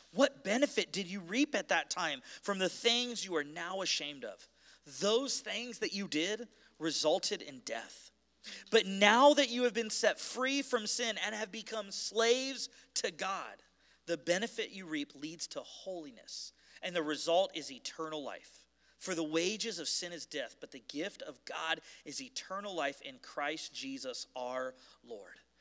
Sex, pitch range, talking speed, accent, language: male, 170-235 Hz, 170 wpm, American, English